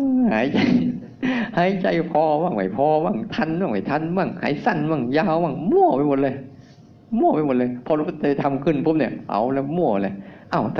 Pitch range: 120-150 Hz